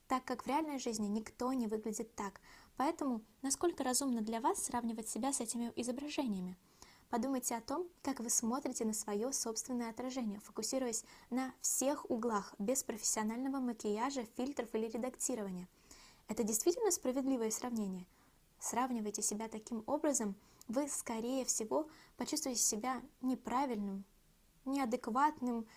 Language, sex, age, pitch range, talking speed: Russian, female, 20-39, 220-270 Hz, 125 wpm